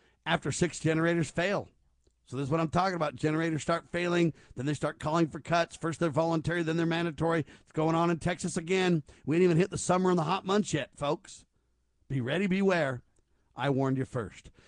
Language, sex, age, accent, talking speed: English, male, 50-69, American, 210 wpm